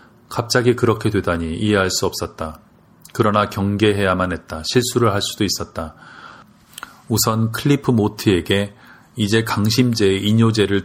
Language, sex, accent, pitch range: Korean, male, native, 95-110 Hz